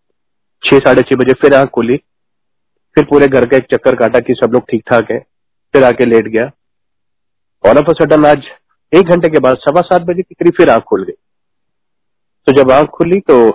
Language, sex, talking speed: Hindi, male, 185 wpm